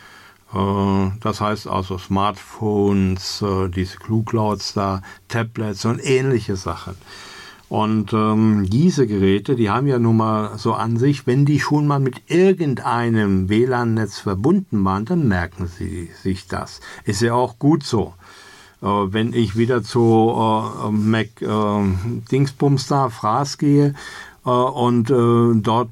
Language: German